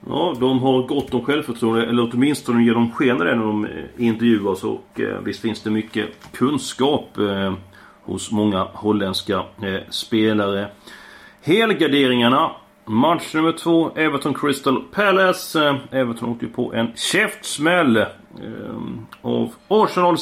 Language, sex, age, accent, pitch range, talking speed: Swedish, male, 40-59, native, 110-150 Hz, 130 wpm